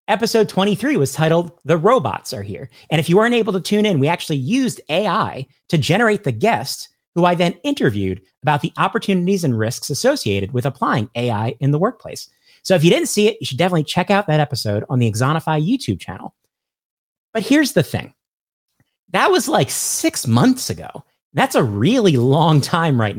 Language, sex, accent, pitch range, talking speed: English, male, American, 120-180 Hz, 190 wpm